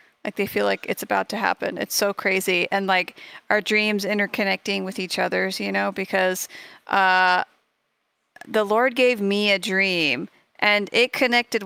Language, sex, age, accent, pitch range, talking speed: English, female, 30-49, American, 185-215 Hz, 165 wpm